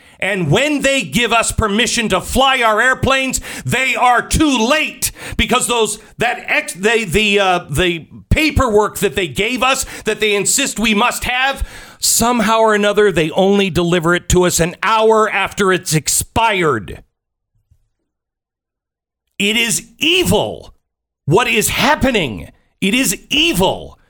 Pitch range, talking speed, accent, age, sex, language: 170-240 Hz, 140 wpm, American, 50-69, male, English